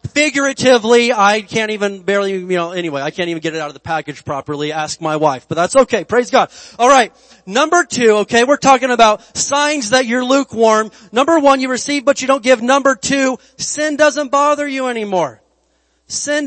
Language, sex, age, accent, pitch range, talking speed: English, male, 30-49, American, 175-235 Hz, 195 wpm